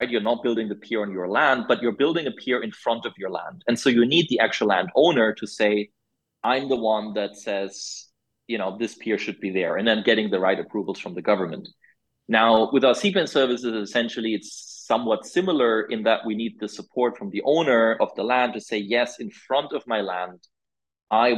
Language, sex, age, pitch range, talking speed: English, male, 20-39, 100-120 Hz, 220 wpm